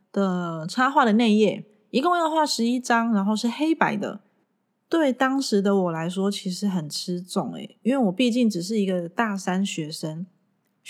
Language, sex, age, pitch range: Chinese, female, 20-39, 185-235 Hz